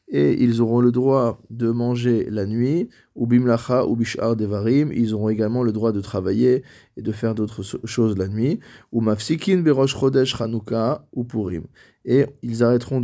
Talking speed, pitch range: 175 wpm, 110-125 Hz